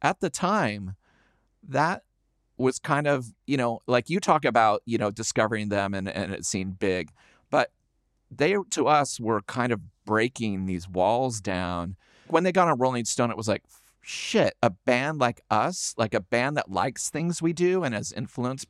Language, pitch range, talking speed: English, 105-135 Hz, 185 wpm